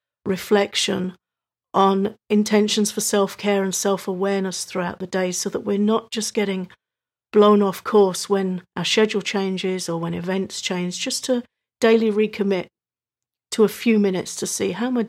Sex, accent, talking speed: female, British, 160 wpm